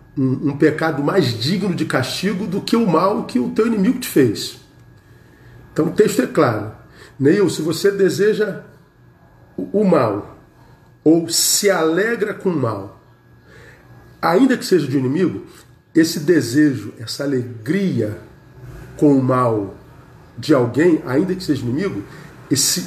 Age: 50-69